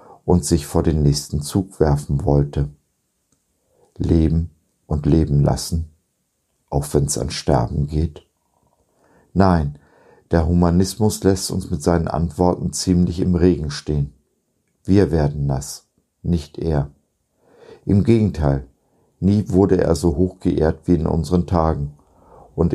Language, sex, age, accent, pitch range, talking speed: German, male, 50-69, German, 75-90 Hz, 125 wpm